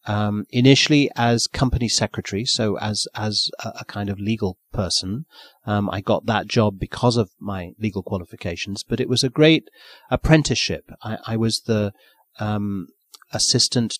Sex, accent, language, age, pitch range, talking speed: male, British, English, 30-49, 100-120 Hz, 155 wpm